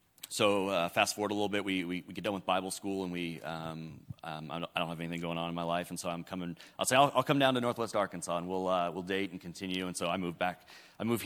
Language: English